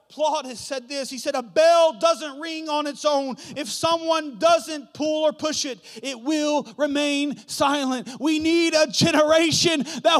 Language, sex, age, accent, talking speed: English, male, 30-49, American, 170 wpm